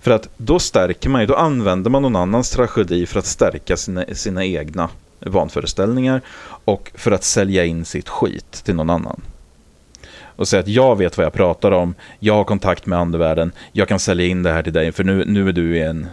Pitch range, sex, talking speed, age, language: 85-120 Hz, male, 215 wpm, 30-49, English